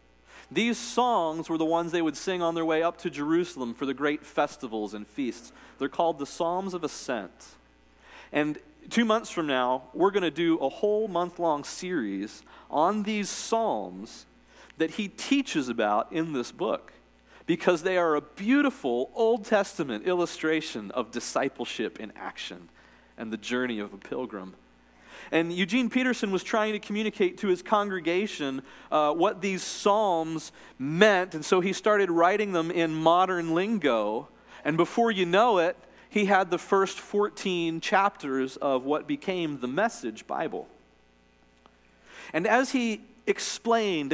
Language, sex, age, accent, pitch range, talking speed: English, male, 40-59, American, 135-205 Hz, 150 wpm